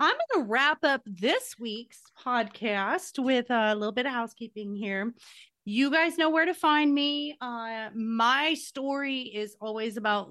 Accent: American